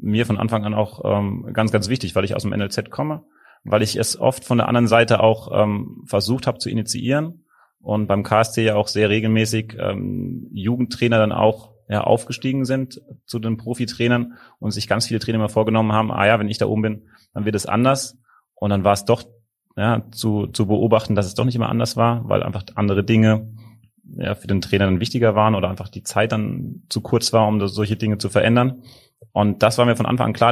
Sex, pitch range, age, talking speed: male, 105-120 Hz, 30-49, 225 wpm